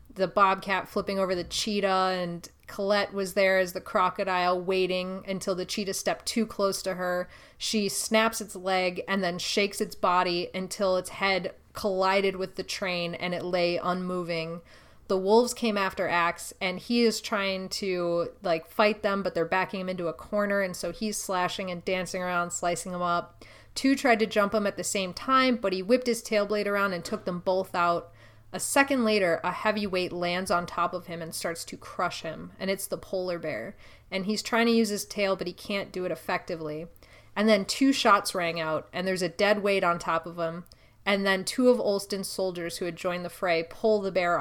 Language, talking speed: English, 210 wpm